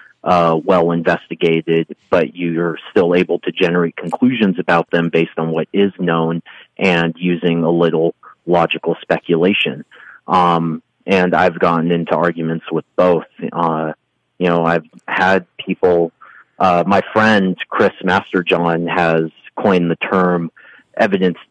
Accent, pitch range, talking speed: American, 85-90 Hz, 130 wpm